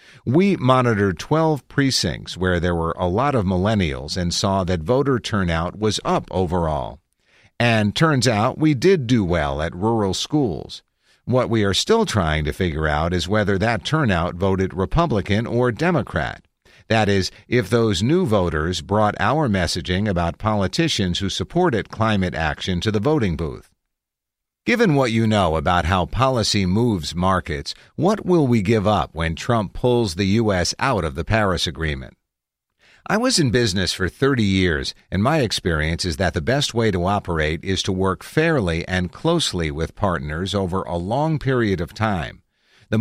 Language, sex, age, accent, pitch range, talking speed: English, male, 50-69, American, 90-120 Hz, 165 wpm